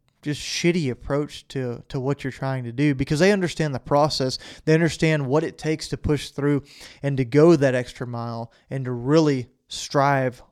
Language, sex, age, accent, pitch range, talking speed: English, male, 30-49, American, 135-155 Hz, 190 wpm